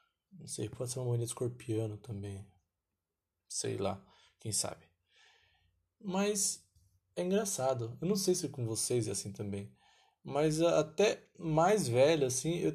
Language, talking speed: Portuguese, 140 wpm